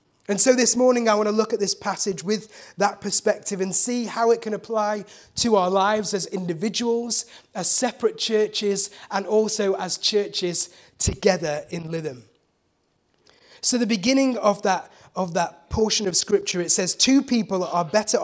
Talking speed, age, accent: 170 wpm, 20-39, British